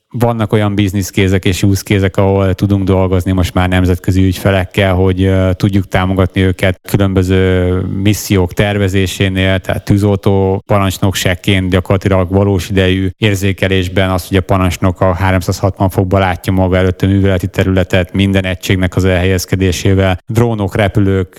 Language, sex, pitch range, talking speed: Hungarian, male, 95-100 Hz, 125 wpm